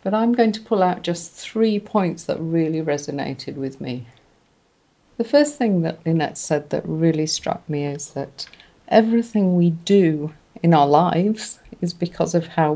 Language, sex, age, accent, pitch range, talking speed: English, female, 50-69, British, 160-200 Hz, 170 wpm